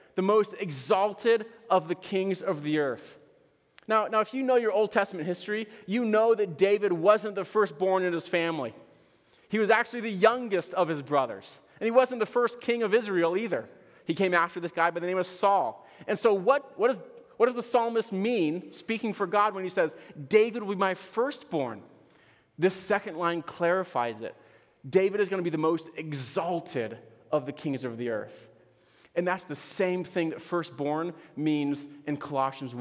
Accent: American